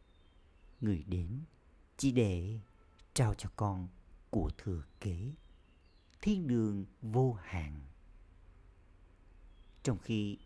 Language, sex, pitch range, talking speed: Vietnamese, male, 75-115 Hz, 90 wpm